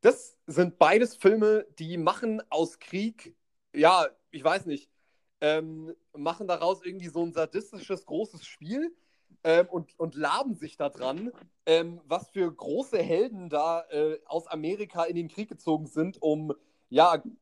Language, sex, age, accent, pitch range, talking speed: German, male, 30-49, German, 155-200 Hz, 150 wpm